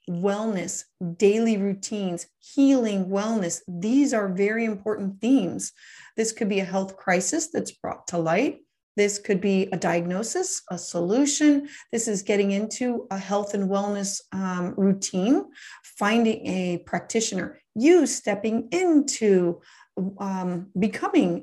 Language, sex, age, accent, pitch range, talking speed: English, female, 30-49, American, 190-230 Hz, 125 wpm